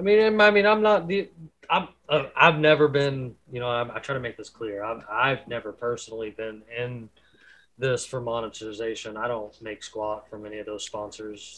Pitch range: 115-140 Hz